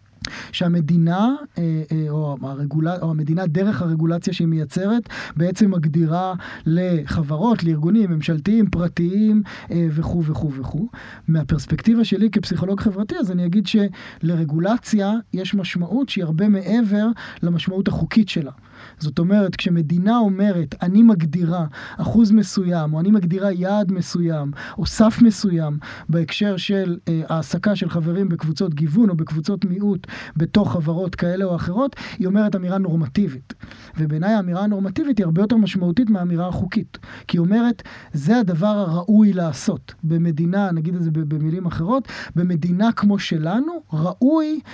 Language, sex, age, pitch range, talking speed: Hebrew, male, 20-39, 165-210 Hz, 120 wpm